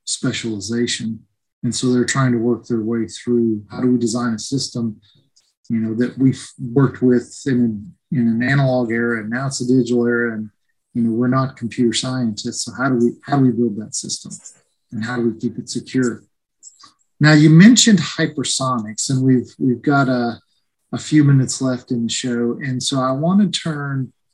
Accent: American